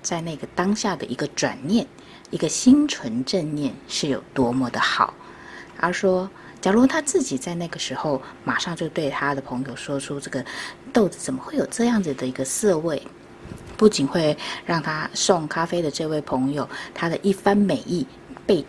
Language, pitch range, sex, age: Chinese, 135-190 Hz, female, 20-39